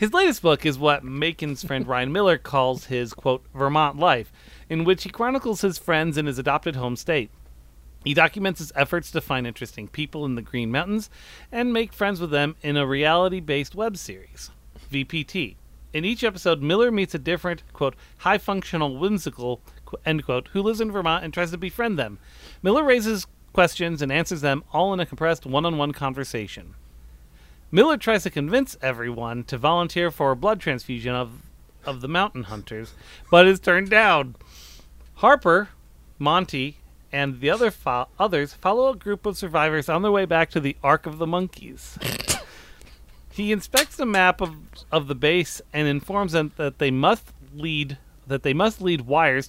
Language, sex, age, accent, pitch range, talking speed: English, male, 30-49, American, 130-180 Hz, 175 wpm